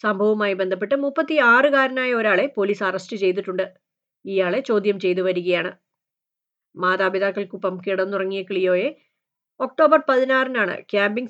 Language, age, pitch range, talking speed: Malayalam, 30-49, 185-250 Hz, 95 wpm